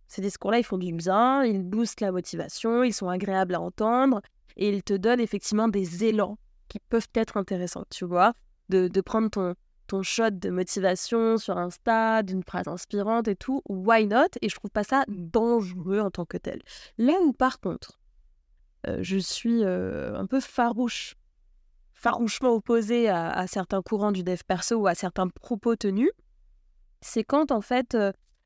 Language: French